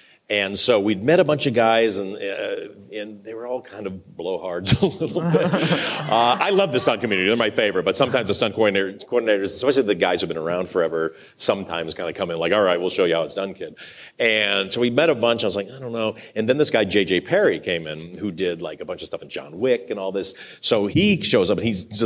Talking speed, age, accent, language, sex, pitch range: 265 wpm, 40-59, American, English, male, 95-135 Hz